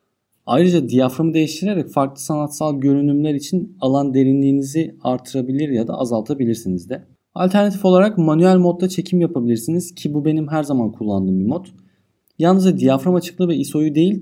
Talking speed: 145 wpm